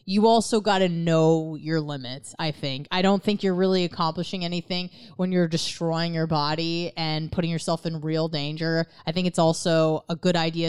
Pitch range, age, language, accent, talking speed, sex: 155-205 Hz, 20-39, English, American, 190 wpm, female